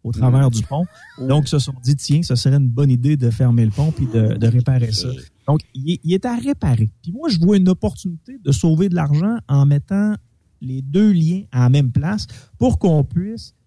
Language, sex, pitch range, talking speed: French, male, 125-165 Hz, 230 wpm